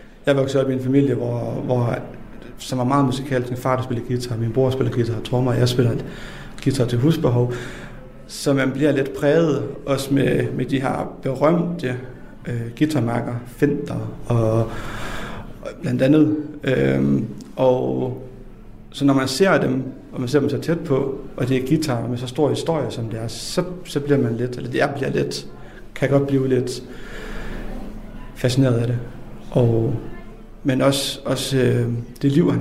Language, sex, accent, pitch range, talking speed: Danish, male, native, 120-140 Hz, 180 wpm